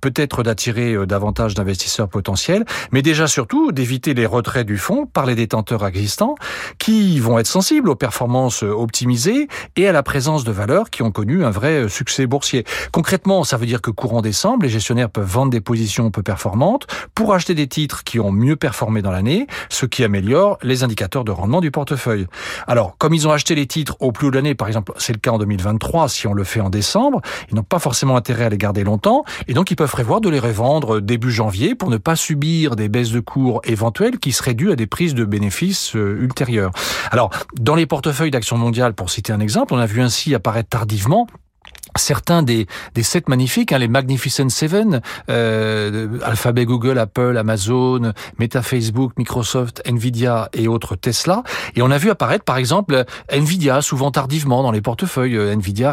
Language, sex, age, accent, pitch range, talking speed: French, male, 40-59, French, 110-145 Hz, 195 wpm